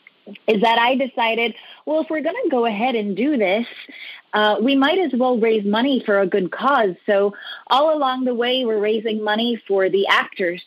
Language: English